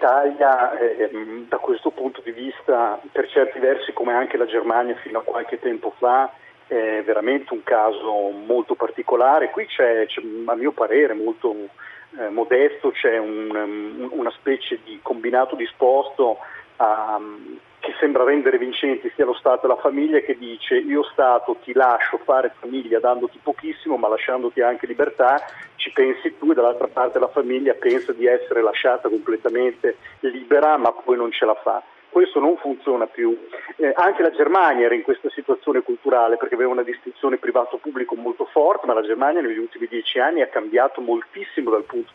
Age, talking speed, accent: 40-59, 165 wpm, native